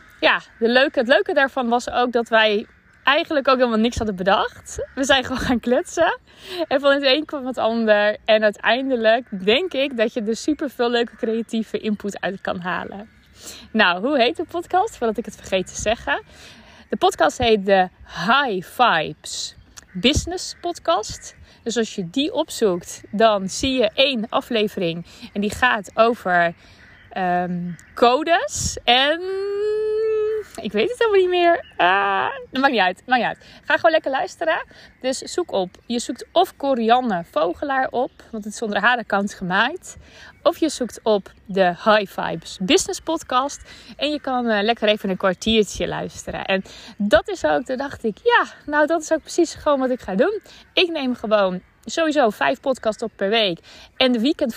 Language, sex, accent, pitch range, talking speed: Dutch, female, Dutch, 210-295 Hz, 175 wpm